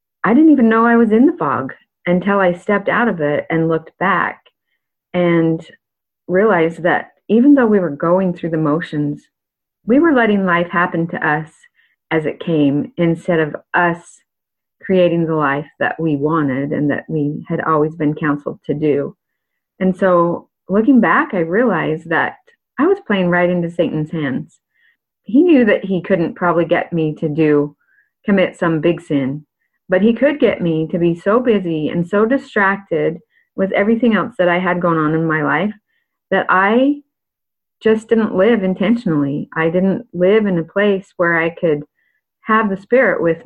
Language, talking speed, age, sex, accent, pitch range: English, 175 wpm, 30-49, female, American, 160-205 Hz